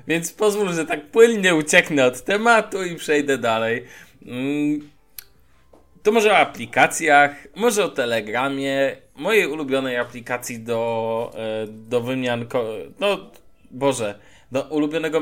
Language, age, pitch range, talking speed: Polish, 20-39, 125-155 Hz, 110 wpm